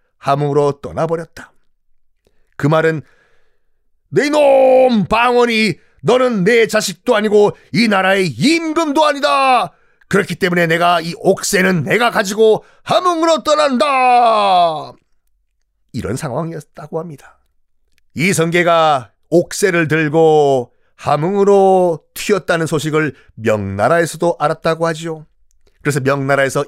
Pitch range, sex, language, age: 140-200 Hz, male, Korean, 40-59